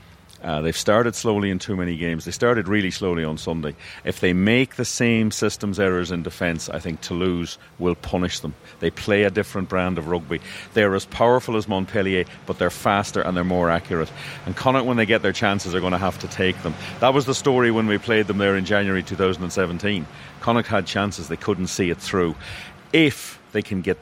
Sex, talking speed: male, 215 wpm